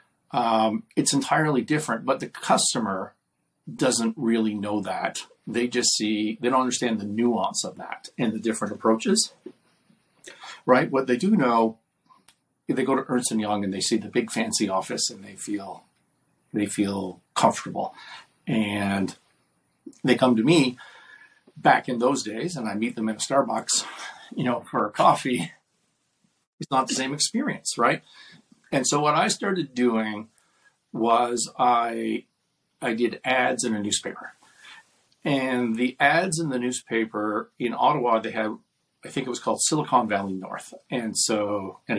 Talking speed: 155 wpm